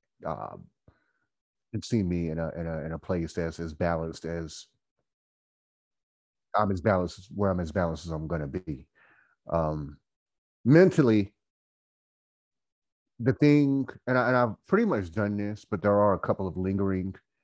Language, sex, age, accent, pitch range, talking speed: English, male, 30-49, American, 85-110 Hz, 160 wpm